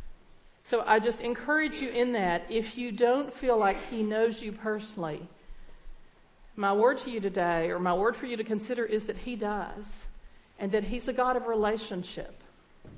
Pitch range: 205-245 Hz